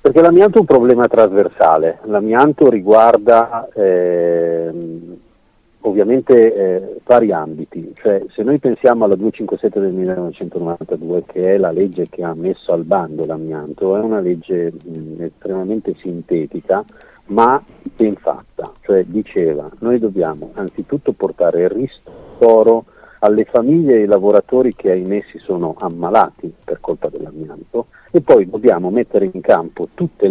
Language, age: Italian, 50-69